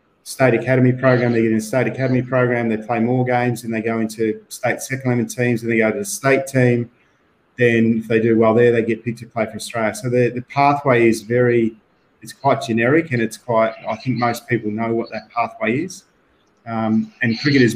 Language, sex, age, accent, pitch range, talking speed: Bengali, male, 30-49, Australian, 115-130 Hz, 220 wpm